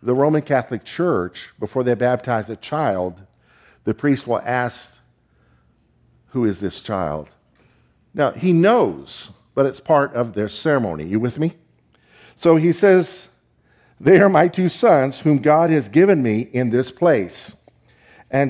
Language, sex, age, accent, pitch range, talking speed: English, male, 50-69, American, 105-155 Hz, 150 wpm